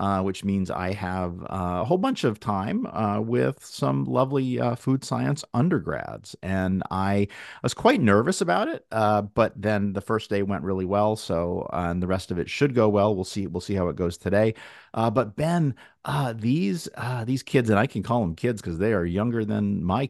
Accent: American